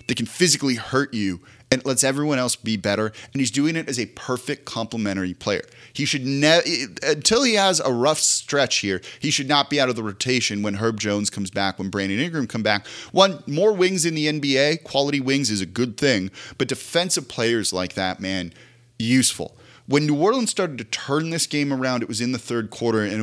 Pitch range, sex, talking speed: 115-150 Hz, male, 215 wpm